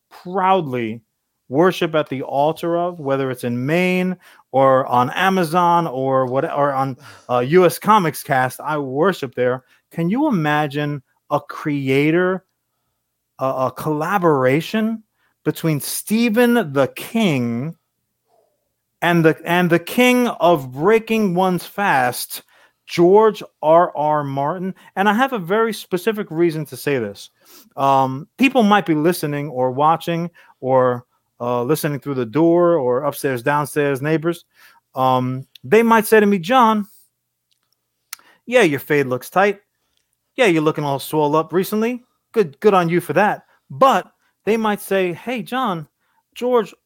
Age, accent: 30-49, American